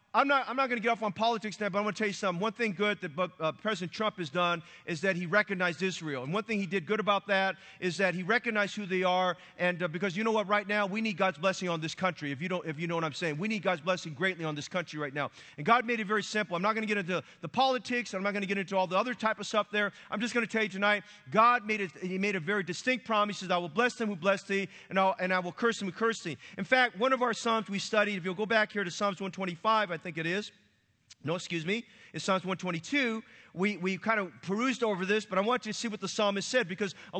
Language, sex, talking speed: English, male, 305 wpm